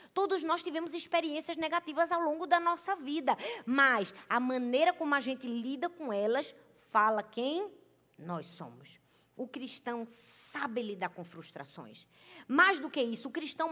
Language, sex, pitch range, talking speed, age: Portuguese, female, 240-310 Hz, 155 wpm, 20-39